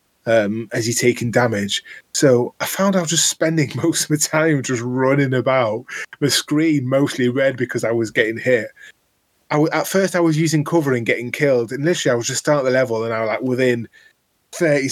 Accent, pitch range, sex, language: British, 115-145 Hz, male, English